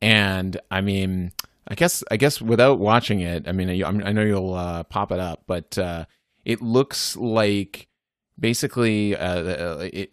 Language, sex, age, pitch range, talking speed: English, male, 30-49, 90-115 Hz, 160 wpm